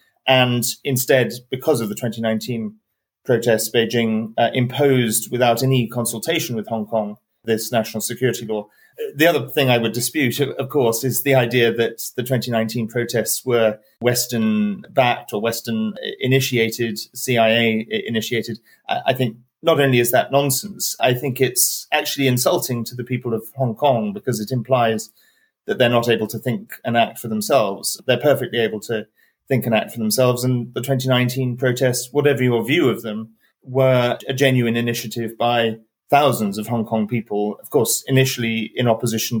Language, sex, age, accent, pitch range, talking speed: English, male, 30-49, British, 110-130 Hz, 165 wpm